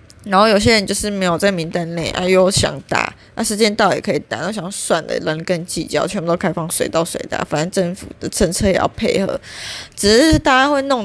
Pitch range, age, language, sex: 170-225 Hz, 20-39, Chinese, female